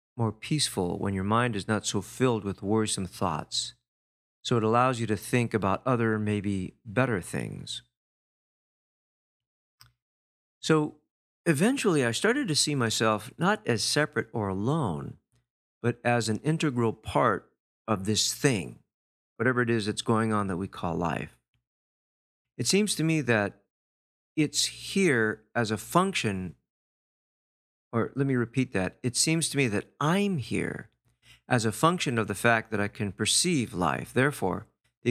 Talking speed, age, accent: 150 wpm, 50-69, American